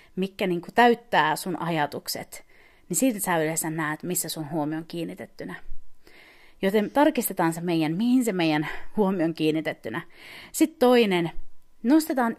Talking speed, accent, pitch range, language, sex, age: 130 wpm, native, 165-235 Hz, Finnish, female, 30-49